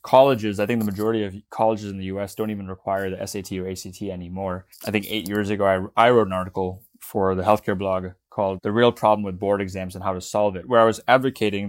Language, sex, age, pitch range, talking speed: English, male, 20-39, 95-110 Hz, 245 wpm